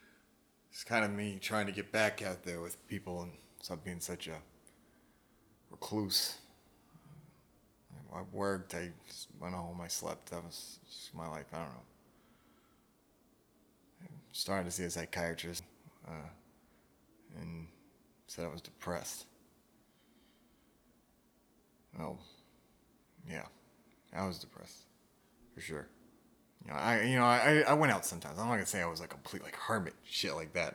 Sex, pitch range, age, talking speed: male, 85-105 Hz, 30-49, 145 wpm